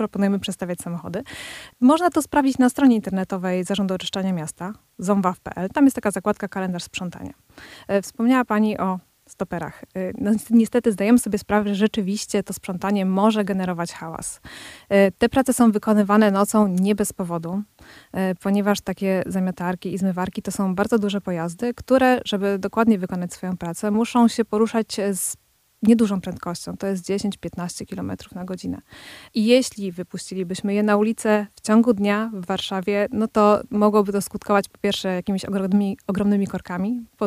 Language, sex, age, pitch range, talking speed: Polish, female, 20-39, 190-220 Hz, 150 wpm